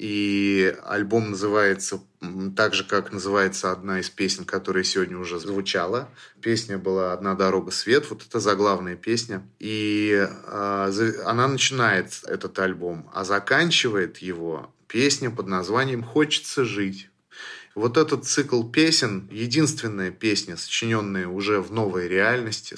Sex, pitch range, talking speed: male, 95-125 Hz, 125 wpm